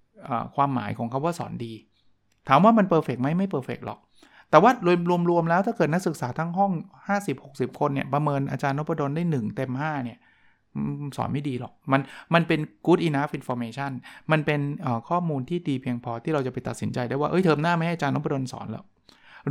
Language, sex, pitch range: Thai, male, 125-170 Hz